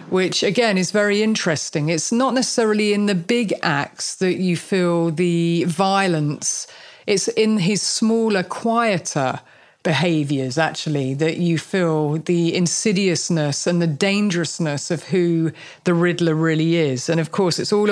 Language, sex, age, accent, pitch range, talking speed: English, female, 40-59, British, 165-200 Hz, 145 wpm